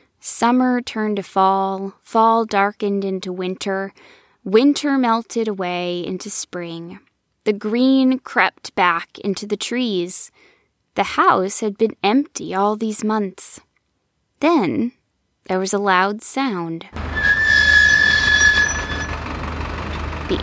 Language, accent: English, American